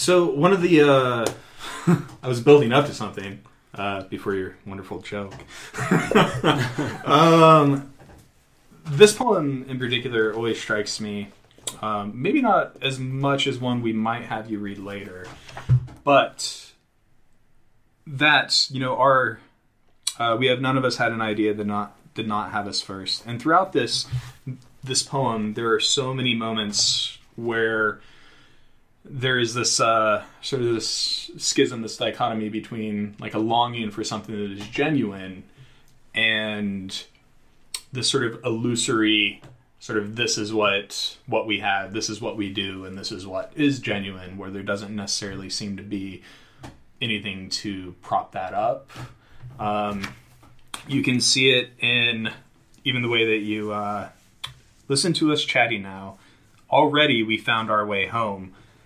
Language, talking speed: English, 150 wpm